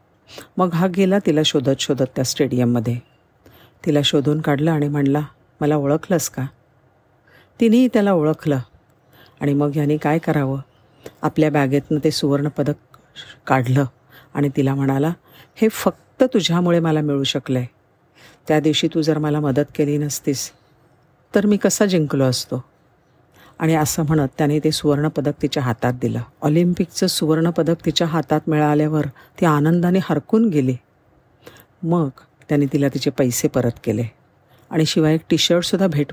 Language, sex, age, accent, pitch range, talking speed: Marathi, female, 50-69, native, 135-165 Hz, 125 wpm